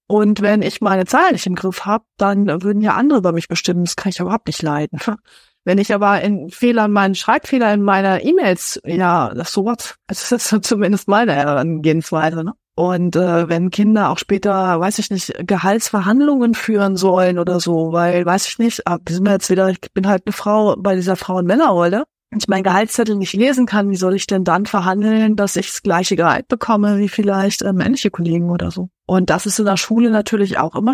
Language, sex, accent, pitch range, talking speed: German, female, German, 180-215 Hz, 215 wpm